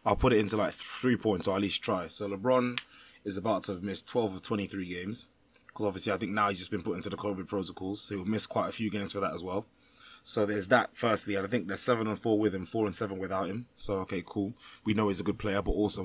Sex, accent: male, British